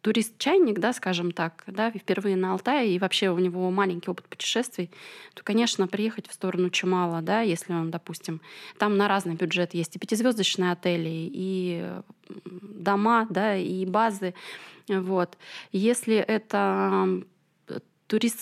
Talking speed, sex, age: 135 wpm, female, 20-39